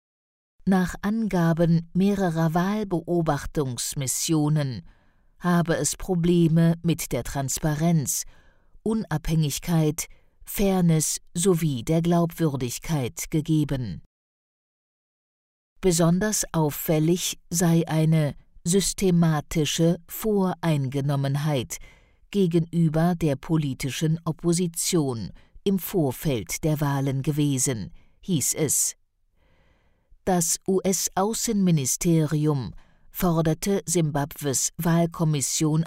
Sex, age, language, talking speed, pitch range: female, 50-69, English, 65 wpm, 145-180 Hz